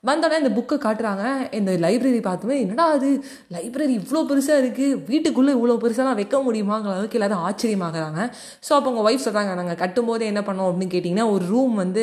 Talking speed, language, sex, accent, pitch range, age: 170 wpm, Tamil, female, native, 185-250 Hz, 20-39